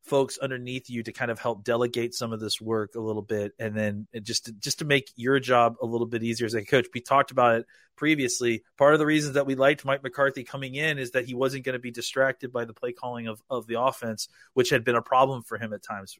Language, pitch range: English, 115-145 Hz